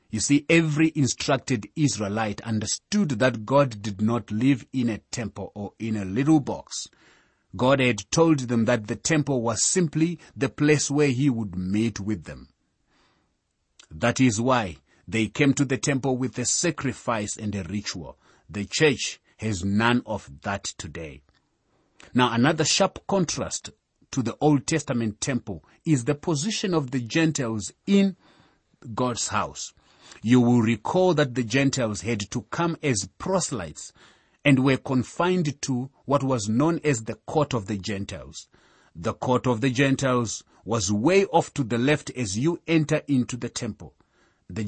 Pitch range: 110-145 Hz